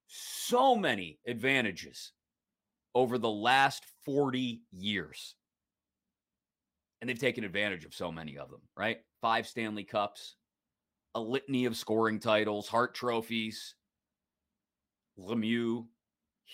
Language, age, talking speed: English, 30-49, 105 wpm